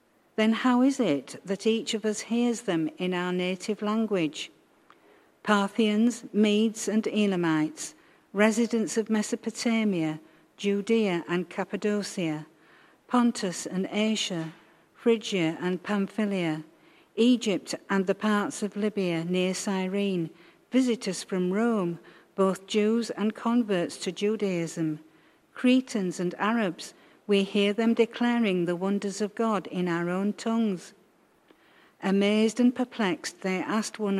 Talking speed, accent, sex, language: 120 wpm, British, female, English